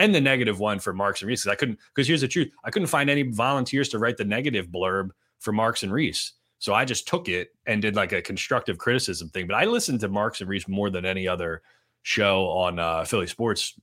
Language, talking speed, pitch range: English, 245 wpm, 85-105 Hz